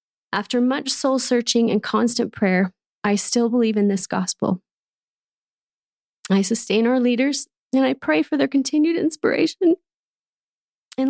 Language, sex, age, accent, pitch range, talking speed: English, female, 30-49, American, 195-250 Hz, 130 wpm